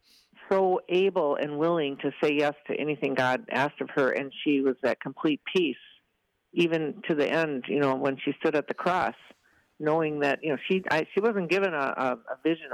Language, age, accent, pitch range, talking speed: English, 50-69, American, 140-175 Hz, 205 wpm